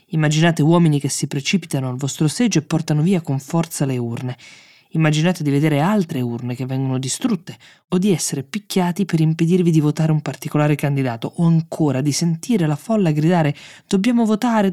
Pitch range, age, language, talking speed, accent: 135-165 Hz, 20-39, Italian, 175 wpm, native